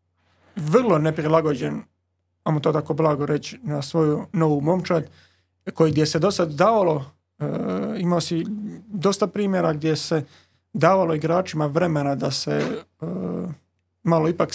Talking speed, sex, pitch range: 130 wpm, male, 145-170 Hz